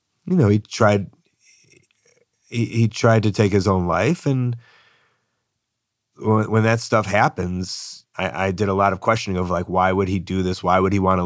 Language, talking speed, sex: English, 195 wpm, male